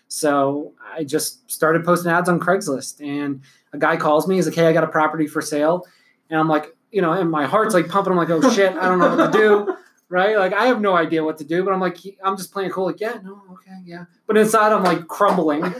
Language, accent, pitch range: English, American, 160-200 Hz